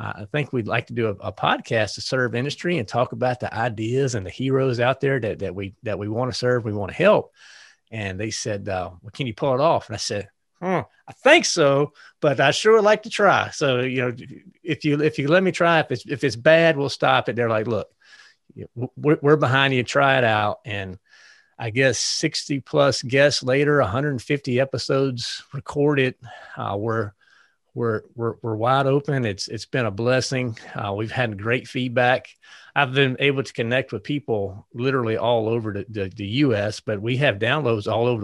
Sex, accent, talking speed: male, American, 205 wpm